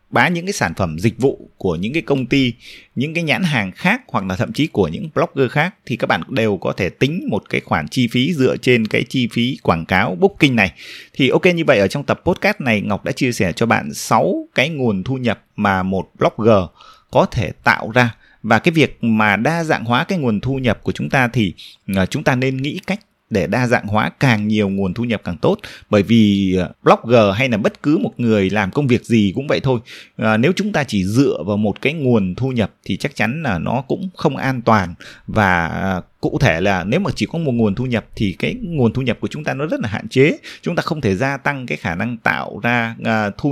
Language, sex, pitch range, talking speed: Vietnamese, male, 110-145 Hz, 245 wpm